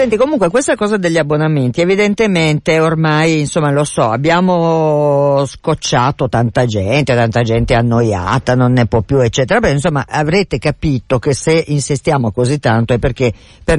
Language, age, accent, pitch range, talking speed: Italian, 50-69, native, 125-160 Hz, 150 wpm